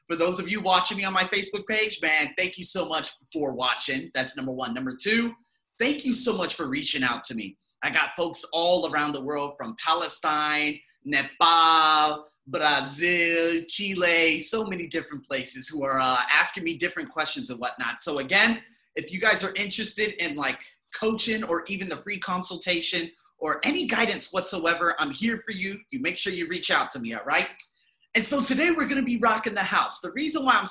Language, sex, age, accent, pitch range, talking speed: English, male, 30-49, American, 160-225 Hz, 200 wpm